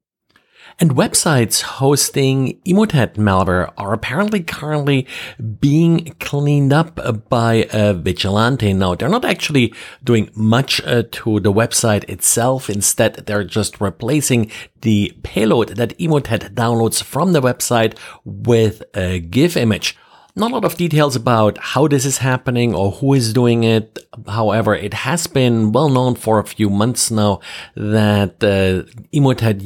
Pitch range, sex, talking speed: 105-130 Hz, male, 140 wpm